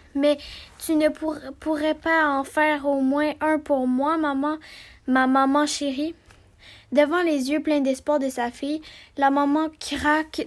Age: 10-29